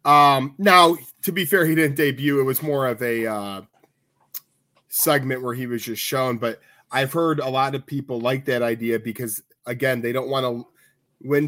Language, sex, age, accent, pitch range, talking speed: English, male, 20-39, American, 115-140 Hz, 195 wpm